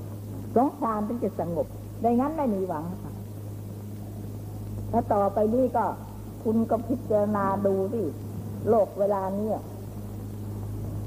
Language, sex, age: Thai, female, 60-79